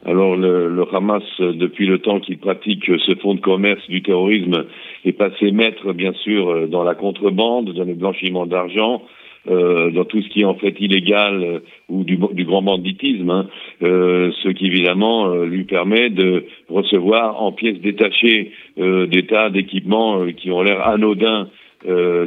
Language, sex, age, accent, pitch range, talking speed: French, male, 50-69, French, 90-105 Hz, 165 wpm